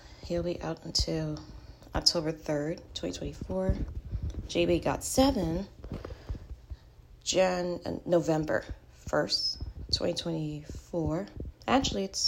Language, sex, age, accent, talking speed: English, female, 30-49, American, 75 wpm